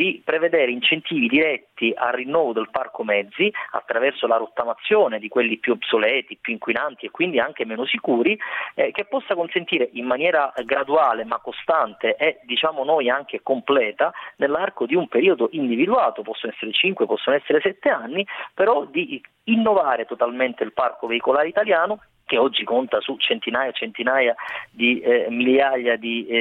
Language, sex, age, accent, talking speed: Italian, male, 30-49, native, 155 wpm